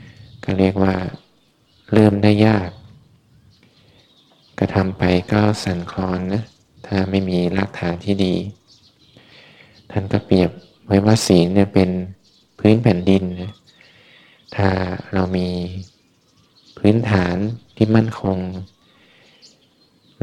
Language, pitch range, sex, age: Thai, 90-105 Hz, male, 20-39